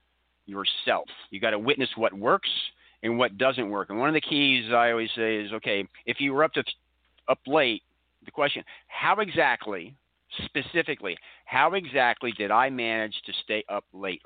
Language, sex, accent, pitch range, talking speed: English, male, American, 100-130 Hz, 175 wpm